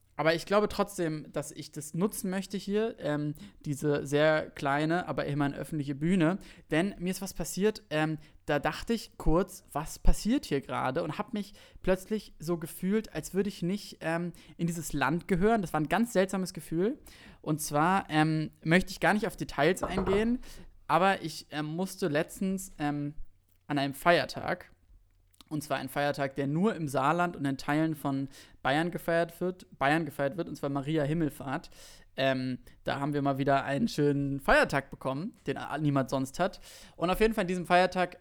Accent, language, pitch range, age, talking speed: German, German, 140-180 Hz, 20-39, 180 wpm